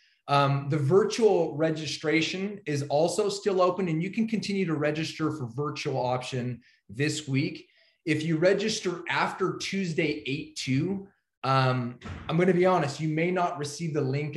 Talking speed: 150 wpm